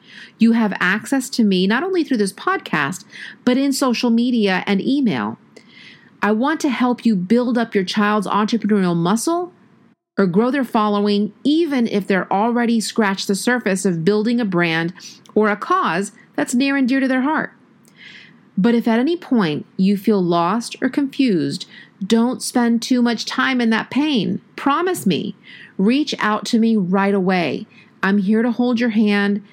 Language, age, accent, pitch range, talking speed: English, 40-59, American, 195-245 Hz, 170 wpm